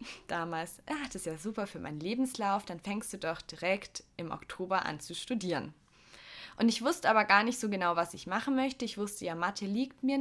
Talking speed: 210 wpm